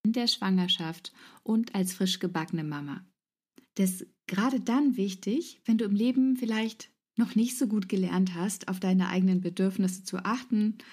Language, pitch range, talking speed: German, 185-235 Hz, 165 wpm